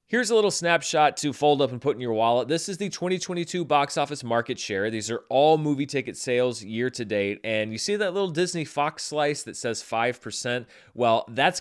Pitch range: 115-150 Hz